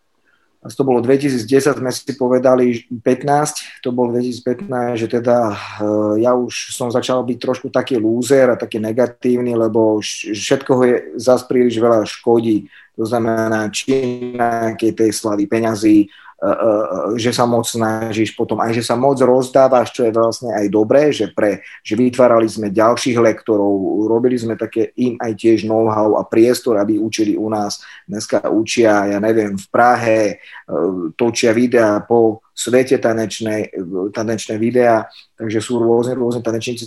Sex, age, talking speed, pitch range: male, 30-49, 150 wpm, 110-125 Hz